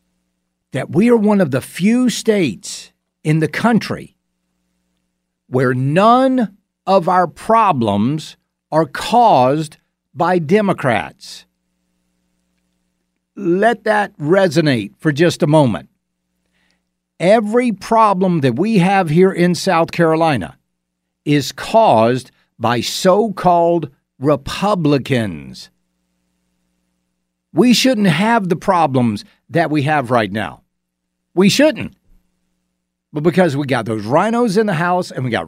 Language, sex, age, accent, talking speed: English, male, 60-79, American, 110 wpm